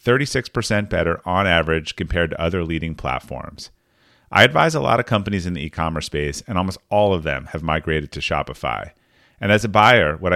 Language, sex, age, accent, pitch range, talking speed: English, male, 30-49, American, 80-105 Hz, 190 wpm